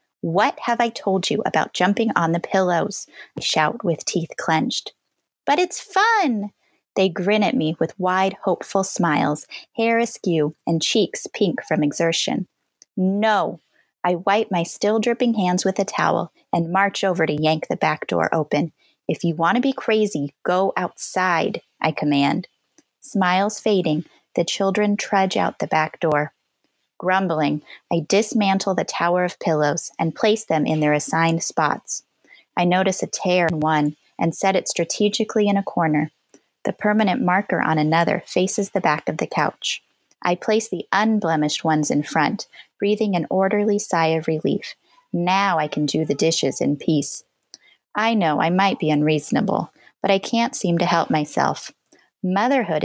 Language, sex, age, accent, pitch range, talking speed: English, female, 30-49, American, 160-205 Hz, 160 wpm